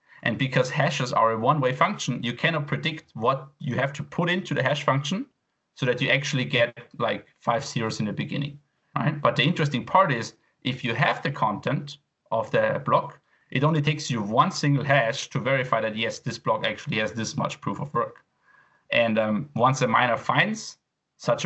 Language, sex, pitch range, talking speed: English, male, 120-150 Hz, 200 wpm